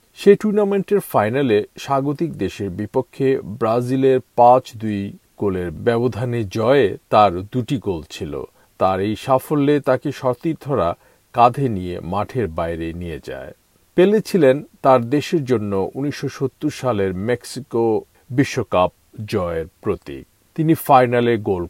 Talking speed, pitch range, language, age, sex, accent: 110 wpm, 105-135 Hz, Bengali, 50-69, male, native